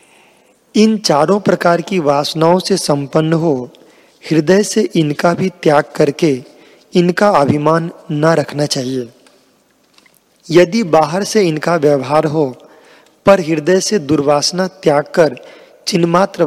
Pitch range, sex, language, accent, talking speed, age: 150-185 Hz, male, Hindi, native, 115 wpm, 40-59